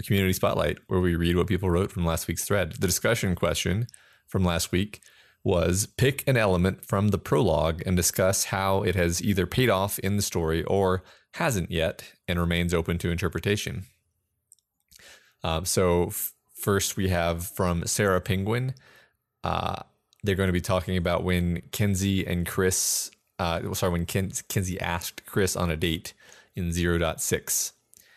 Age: 30-49